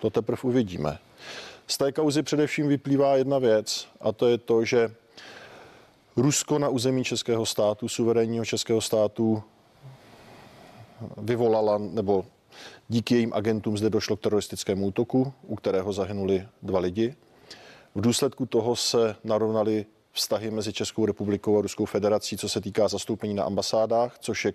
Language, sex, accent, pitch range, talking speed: Czech, male, native, 100-120 Hz, 140 wpm